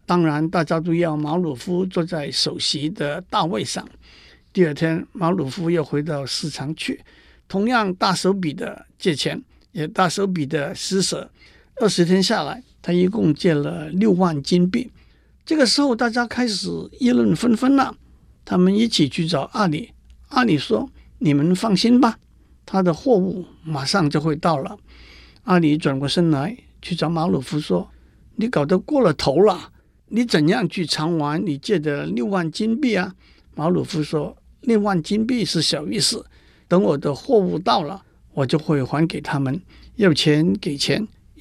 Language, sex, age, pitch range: Chinese, male, 60-79, 155-205 Hz